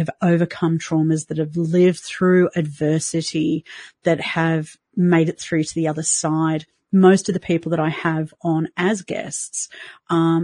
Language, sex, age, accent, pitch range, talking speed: English, female, 40-59, Australian, 160-185 Hz, 160 wpm